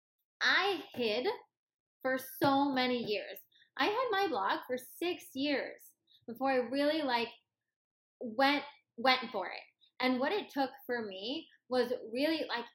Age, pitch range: 20-39, 230-310 Hz